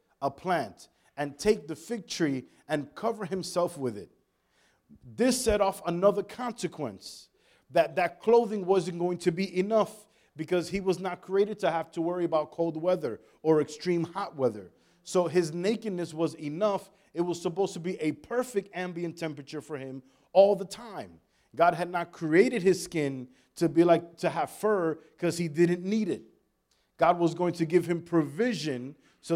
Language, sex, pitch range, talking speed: English, male, 160-200 Hz, 175 wpm